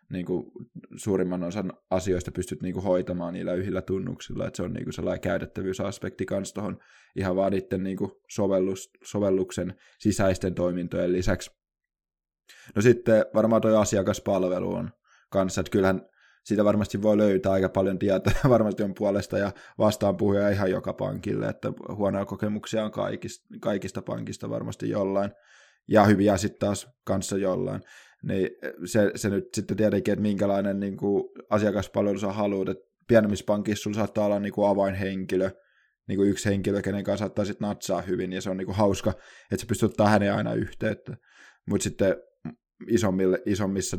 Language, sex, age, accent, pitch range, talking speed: Finnish, male, 20-39, native, 95-105 Hz, 150 wpm